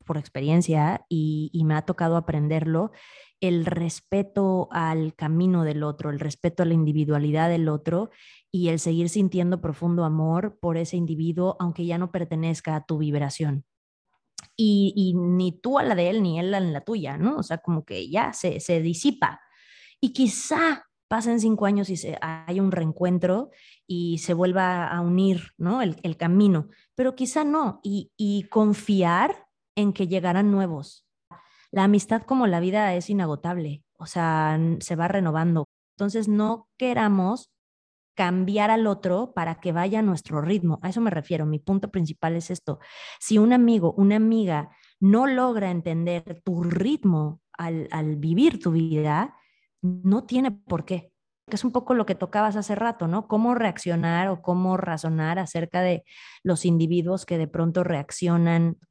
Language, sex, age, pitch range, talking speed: Spanish, female, 20-39, 165-205 Hz, 165 wpm